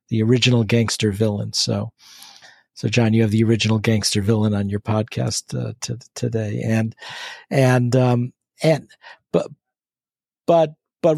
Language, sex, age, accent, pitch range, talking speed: English, male, 50-69, American, 110-130 Hz, 140 wpm